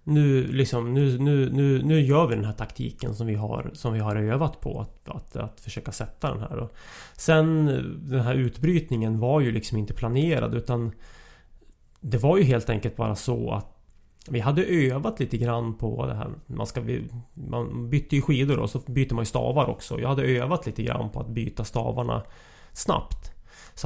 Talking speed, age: 195 wpm, 30-49